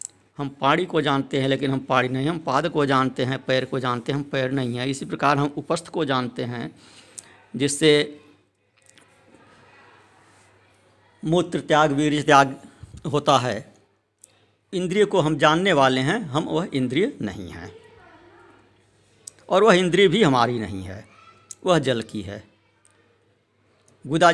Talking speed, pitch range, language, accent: 145 wpm, 110-155 Hz, Hindi, native